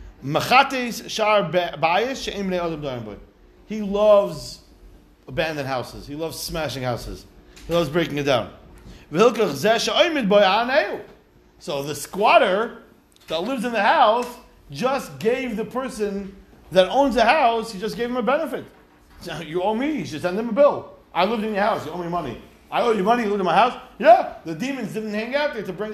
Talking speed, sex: 165 wpm, male